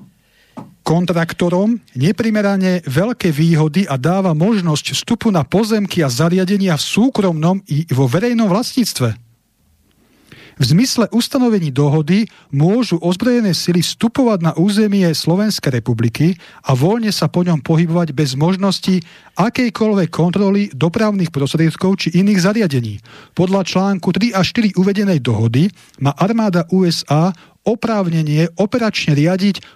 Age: 40-59